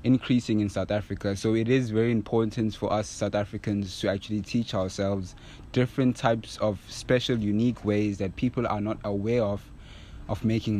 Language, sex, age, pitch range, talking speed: English, male, 20-39, 105-120 Hz, 170 wpm